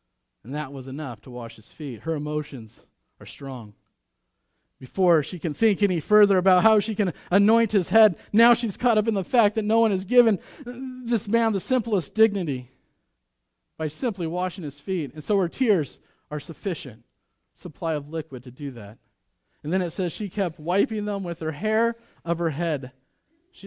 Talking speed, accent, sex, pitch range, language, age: 190 wpm, American, male, 150-220 Hz, English, 40-59